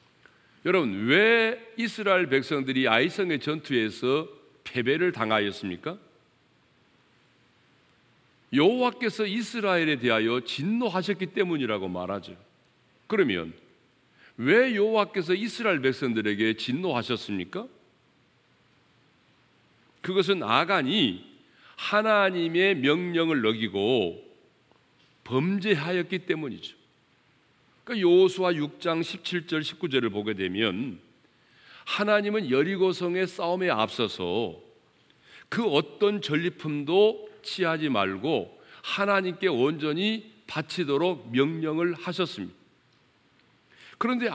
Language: Korean